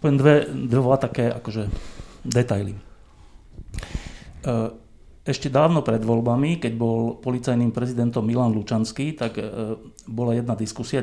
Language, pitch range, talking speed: Slovak, 110-130 Hz, 105 wpm